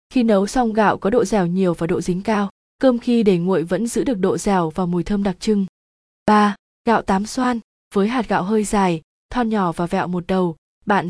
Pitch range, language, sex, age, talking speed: 185-225 Hz, Vietnamese, female, 20-39, 225 wpm